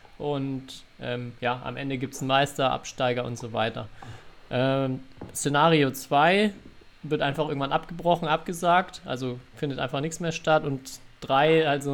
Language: German